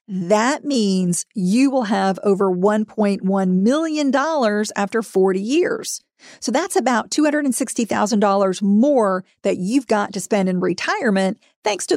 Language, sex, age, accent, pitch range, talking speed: English, female, 50-69, American, 195-250 Hz, 125 wpm